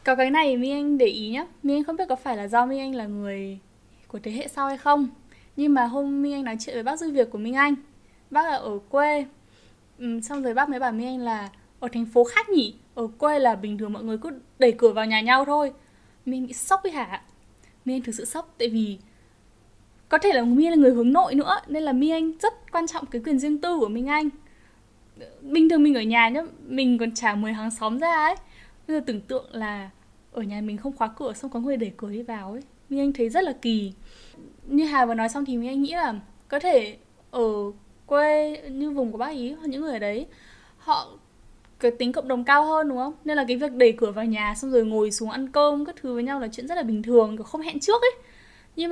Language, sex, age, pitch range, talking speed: Vietnamese, female, 10-29, 230-295 Hz, 250 wpm